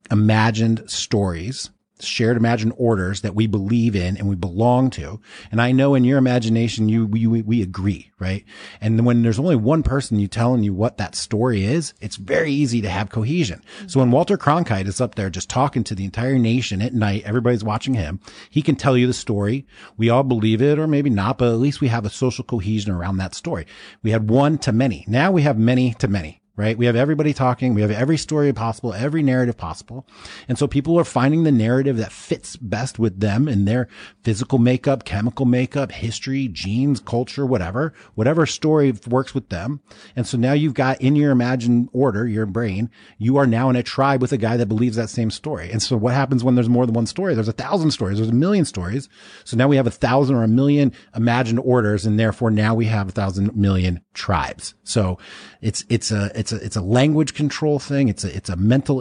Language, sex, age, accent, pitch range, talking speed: English, male, 30-49, American, 105-135 Hz, 220 wpm